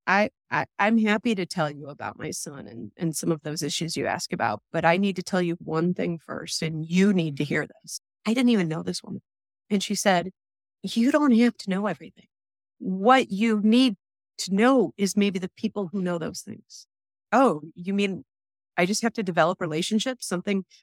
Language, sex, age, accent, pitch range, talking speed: English, female, 30-49, American, 160-205 Hz, 210 wpm